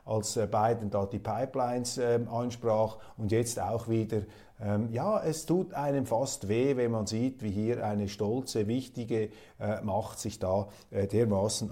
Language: German